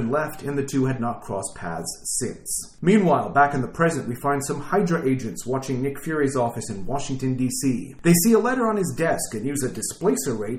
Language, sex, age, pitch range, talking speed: English, male, 40-59, 125-160 Hz, 215 wpm